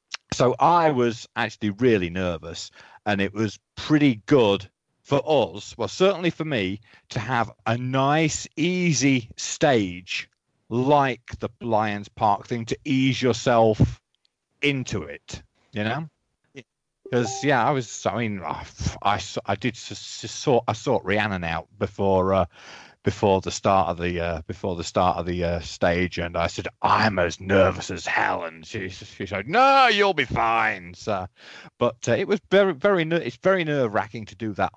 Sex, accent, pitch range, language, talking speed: male, British, 95-140 Hz, English, 165 wpm